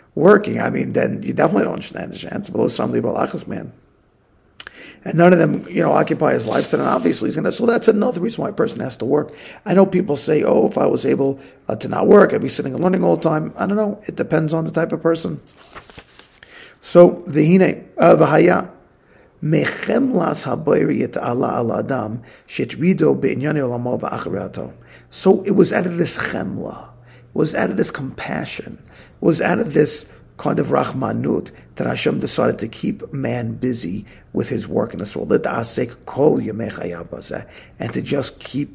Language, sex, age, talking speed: English, male, 50-69, 170 wpm